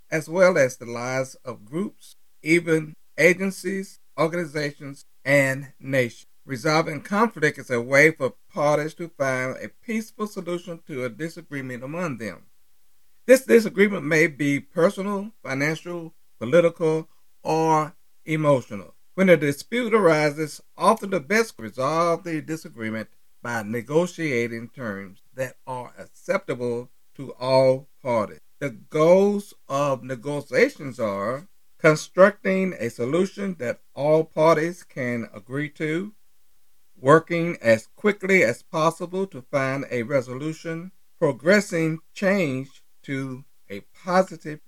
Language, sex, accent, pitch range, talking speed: English, male, American, 130-175 Hz, 115 wpm